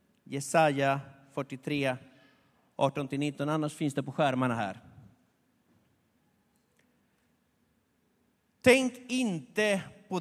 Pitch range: 145-205 Hz